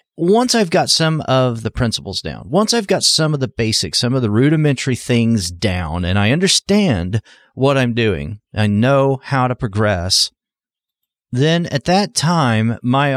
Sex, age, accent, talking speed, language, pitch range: male, 40-59, American, 170 wpm, English, 100-135 Hz